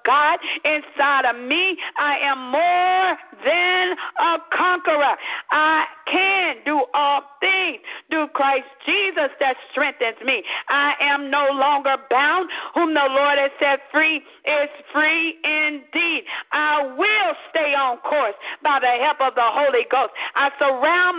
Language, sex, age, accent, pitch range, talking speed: English, female, 50-69, American, 275-325 Hz, 140 wpm